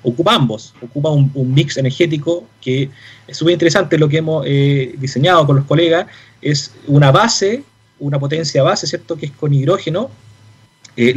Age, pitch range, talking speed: 30-49, 130-165 Hz, 165 wpm